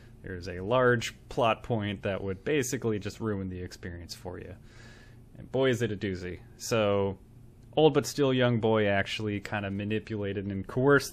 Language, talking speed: English, 175 wpm